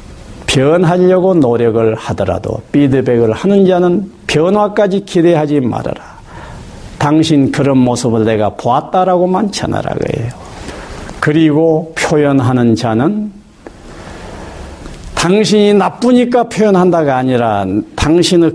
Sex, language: male, Korean